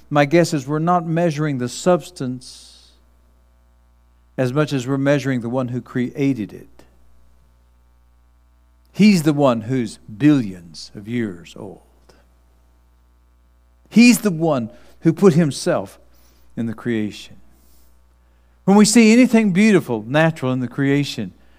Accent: American